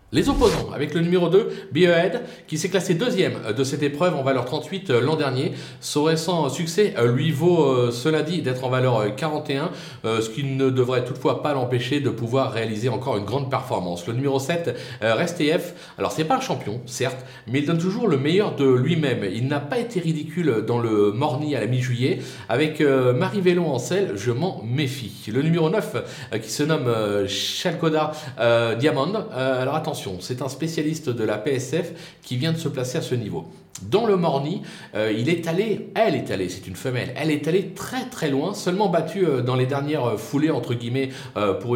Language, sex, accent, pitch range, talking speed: French, male, French, 125-165 Hz, 190 wpm